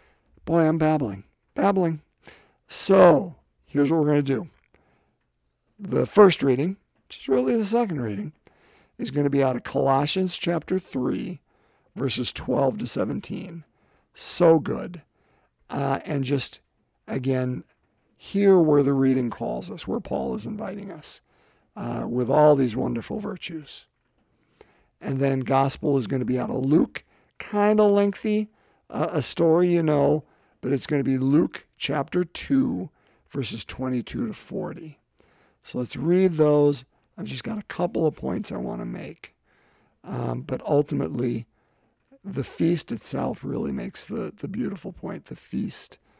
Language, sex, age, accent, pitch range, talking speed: English, male, 50-69, American, 130-175 Hz, 150 wpm